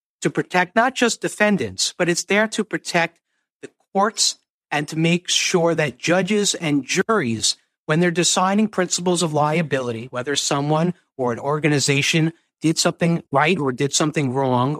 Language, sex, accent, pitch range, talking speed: English, male, American, 130-165 Hz, 155 wpm